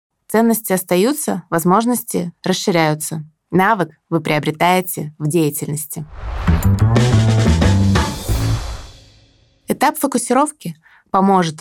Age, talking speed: 20-39, 60 wpm